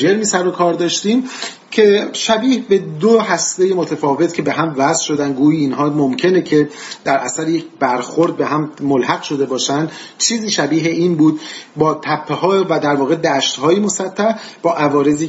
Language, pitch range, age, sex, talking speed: Persian, 135-185 Hz, 40-59, male, 170 wpm